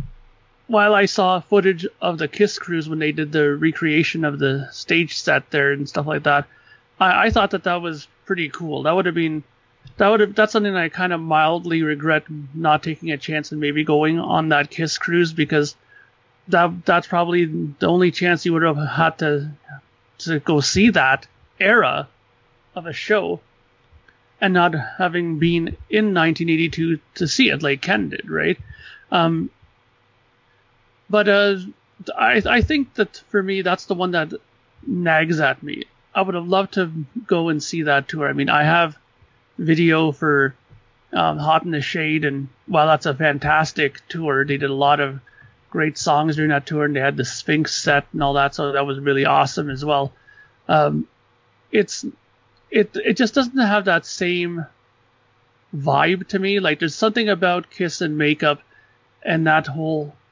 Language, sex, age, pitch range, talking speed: English, male, 30-49, 145-175 Hz, 180 wpm